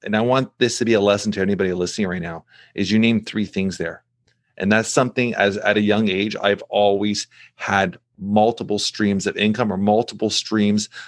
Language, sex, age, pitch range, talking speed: English, male, 30-49, 100-115 Hz, 200 wpm